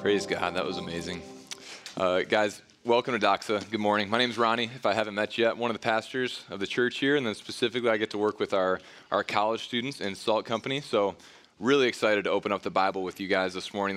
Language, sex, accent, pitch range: English, male, American, 105-125 Hz